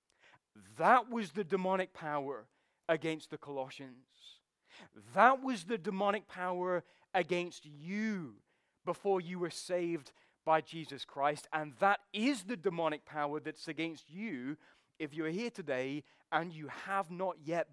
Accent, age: British, 30-49